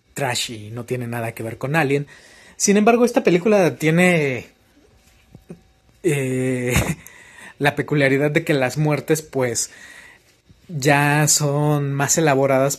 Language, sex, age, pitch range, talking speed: Spanish, male, 30-49, 120-145 Hz, 120 wpm